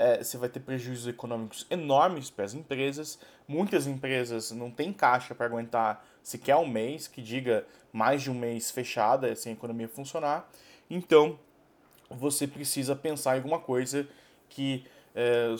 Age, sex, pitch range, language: 20-39, male, 120-145 Hz, Portuguese